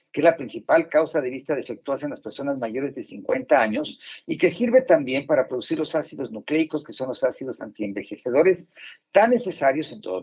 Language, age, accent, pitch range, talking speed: Spanish, 50-69, Mexican, 135-210 Hz, 195 wpm